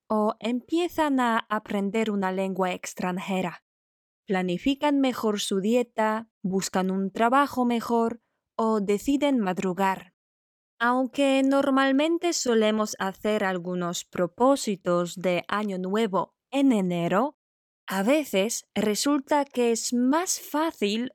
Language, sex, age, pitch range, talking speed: Polish, female, 20-39, 195-270 Hz, 100 wpm